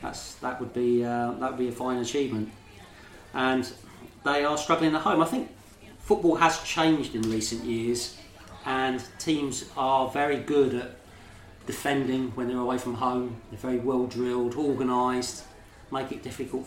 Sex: male